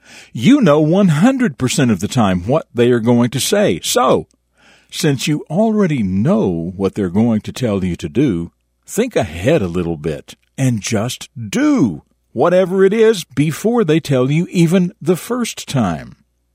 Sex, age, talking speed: male, 60-79, 160 wpm